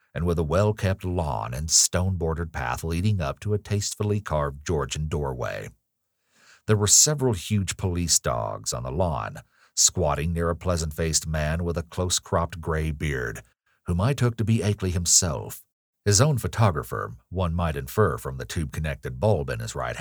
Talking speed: 165 wpm